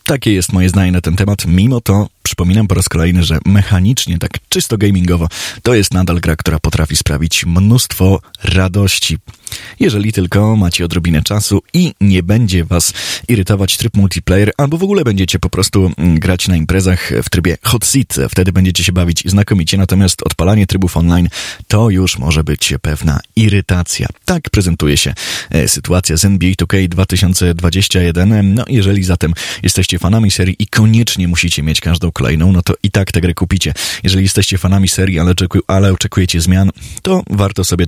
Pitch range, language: 85-100 Hz, Polish